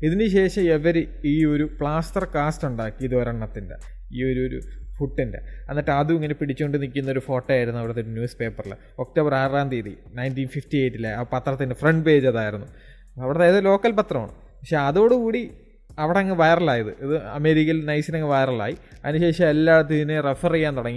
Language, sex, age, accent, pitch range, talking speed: Malayalam, male, 20-39, native, 130-160 Hz, 150 wpm